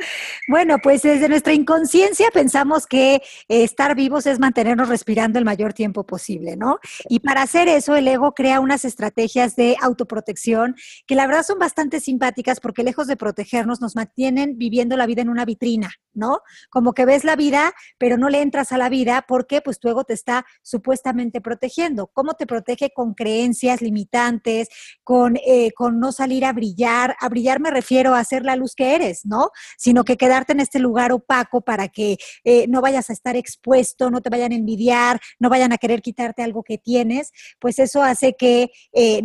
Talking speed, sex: 190 wpm, female